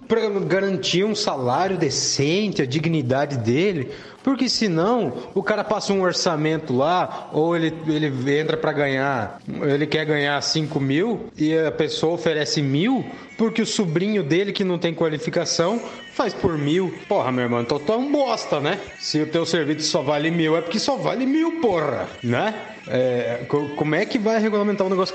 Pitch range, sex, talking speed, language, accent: 145-205 Hz, male, 175 wpm, Portuguese, Brazilian